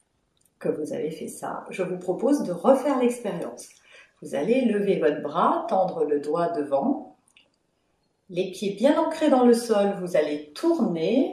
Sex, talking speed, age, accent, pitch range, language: female, 160 wpm, 40-59, French, 205-265 Hz, French